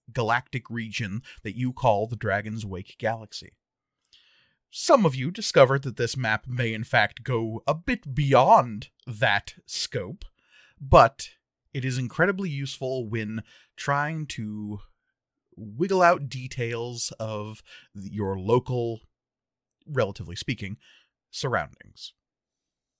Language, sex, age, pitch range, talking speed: English, male, 30-49, 110-145 Hz, 110 wpm